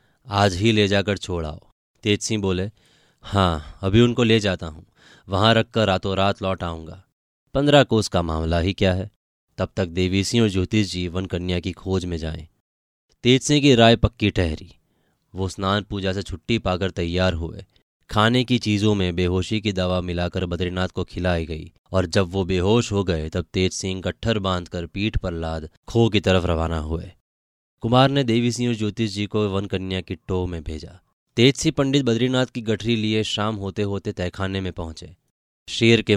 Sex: male